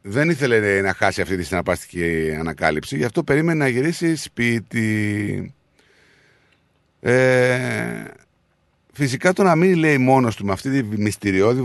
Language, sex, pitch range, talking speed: Greek, male, 95-150 Hz, 135 wpm